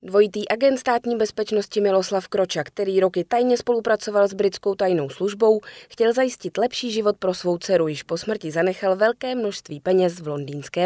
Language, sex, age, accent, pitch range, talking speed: Czech, female, 20-39, native, 175-225 Hz, 165 wpm